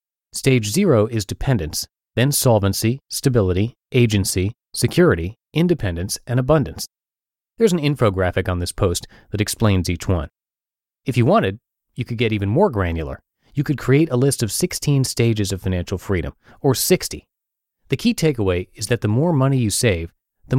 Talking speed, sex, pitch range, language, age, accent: 160 wpm, male, 95-135 Hz, English, 30-49, American